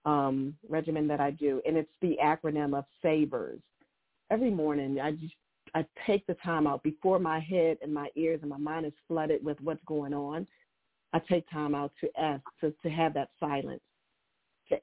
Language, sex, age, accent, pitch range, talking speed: English, female, 40-59, American, 145-165 Hz, 190 wpm